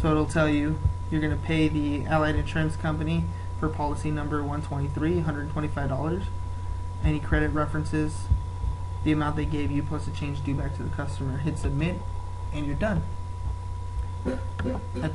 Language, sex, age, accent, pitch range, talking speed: English, male, 20-39, American, 75-90 Hz, 155 wpm